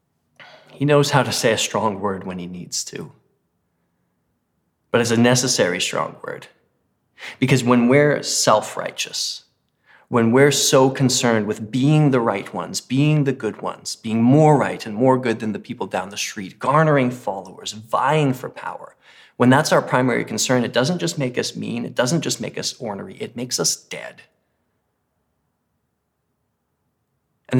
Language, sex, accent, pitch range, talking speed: English, male, American, 110-140 Hz, 160 wpm